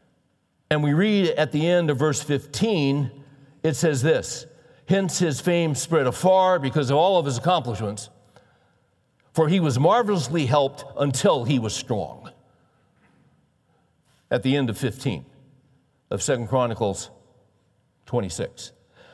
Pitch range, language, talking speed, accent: 135-180 Hz, English, 130 wpm, American